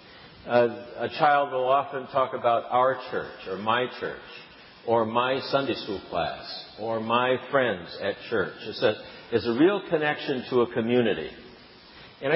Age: 50-69